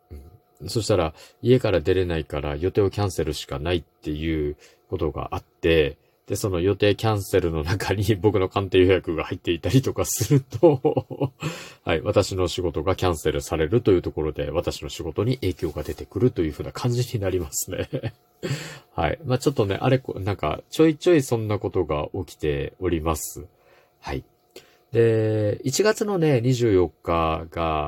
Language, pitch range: Japanese, 90-120 Hz